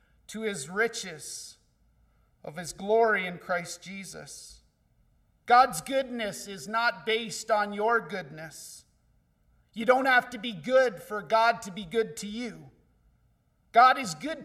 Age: 40-59